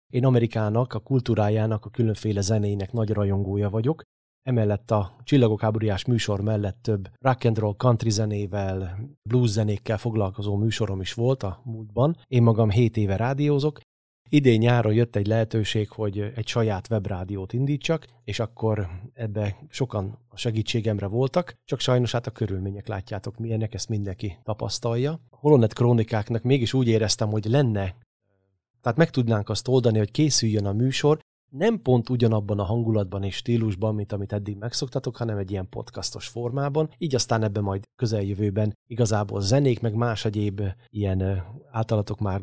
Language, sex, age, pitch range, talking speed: Hungarian, male, 30-49, 105-120 Hz, 150 wpm